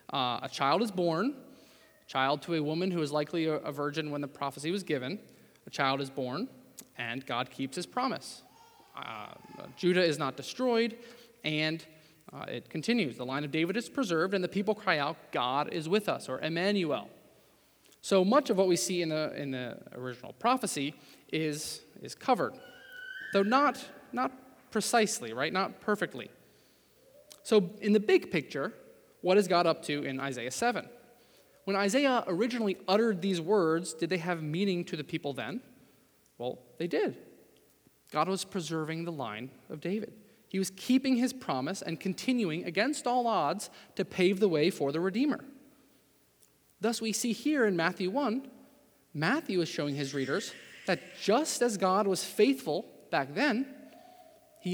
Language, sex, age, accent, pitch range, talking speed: English, male, 20-39, American, 155-240 Hz, 170 wpm